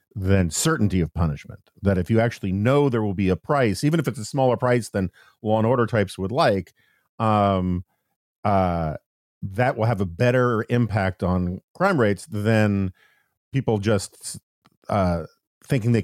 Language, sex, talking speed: English, male, 165 wpm